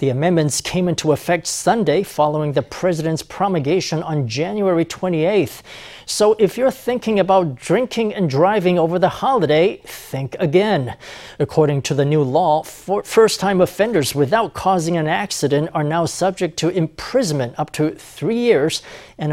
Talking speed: 150 wpm